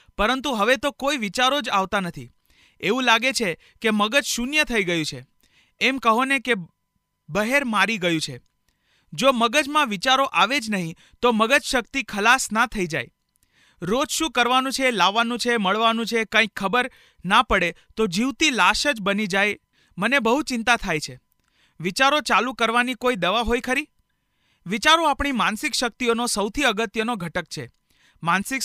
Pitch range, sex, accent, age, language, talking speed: 195-255 Hz, male, native, 40-59, Gujarati, 130 wpm